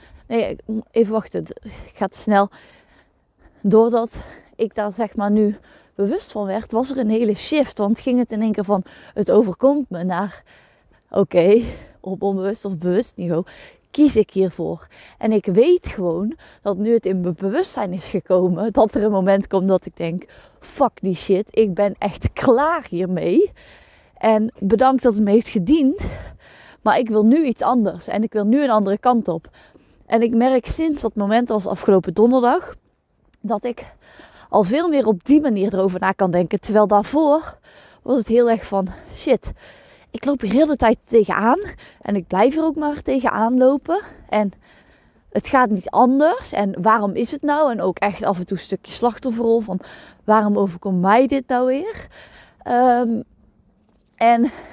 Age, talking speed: 20-39, 180 wpm